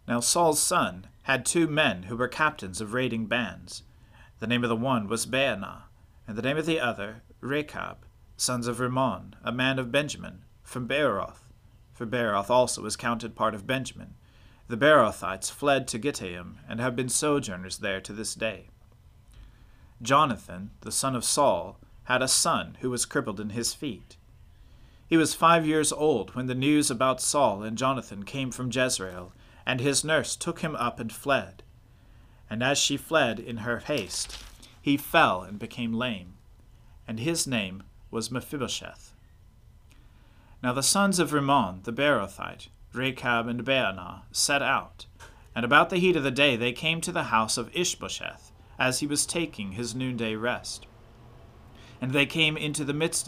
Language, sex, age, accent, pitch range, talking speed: English, male, 40-59, American, 110-140 Hz, 170 wpm